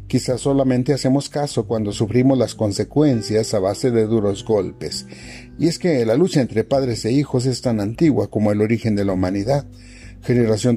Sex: male